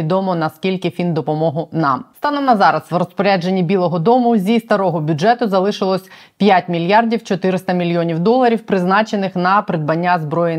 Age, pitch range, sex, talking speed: 20-39, 160-205 Hz, female, 140 wpm